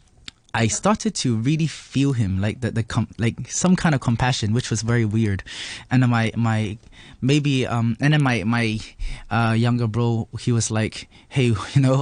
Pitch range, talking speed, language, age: 110-130 Hz, 190 wpm, English, 20-39